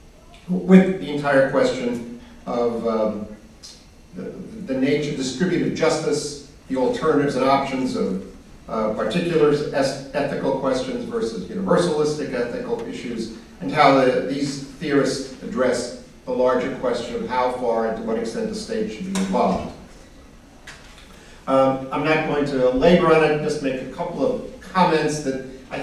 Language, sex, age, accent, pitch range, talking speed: English, male, 50-69, American, 130-175 Hz, 140 wpm